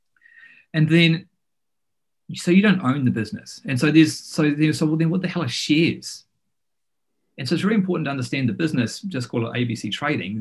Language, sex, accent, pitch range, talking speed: English, male, Australian, 115-150 Hz, 195 wpm